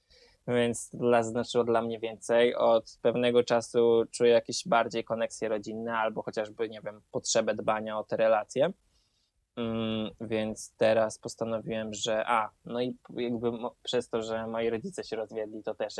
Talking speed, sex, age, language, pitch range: 160 wpm, male, 20-39, Polish, 110-125 Hz